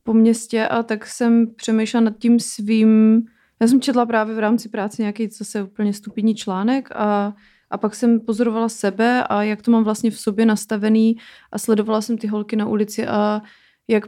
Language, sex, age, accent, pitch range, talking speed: Czech, female, 30-49, native, 210-235 Hz, 190 wpm